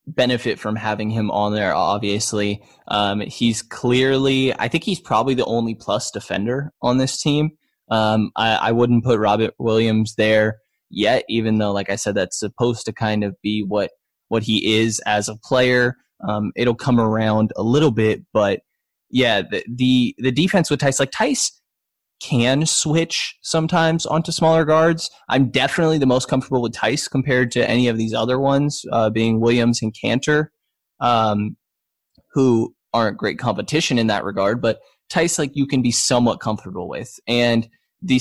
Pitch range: 110-130 Hz